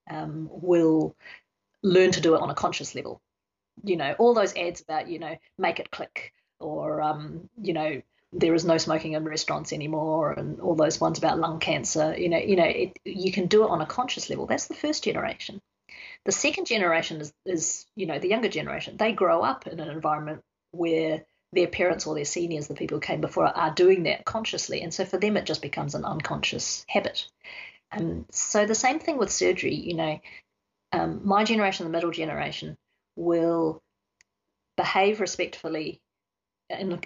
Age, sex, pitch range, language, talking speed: 30-49, female, 155-195 Hz, English, 190 wpm